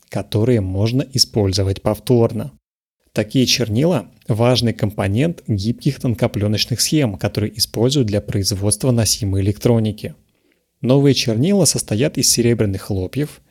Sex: male